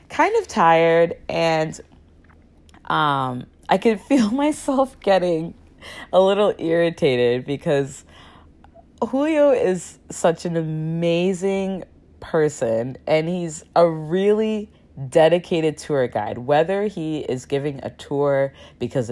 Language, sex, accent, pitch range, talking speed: English, female, American, 115-175 Hz, 105 wpm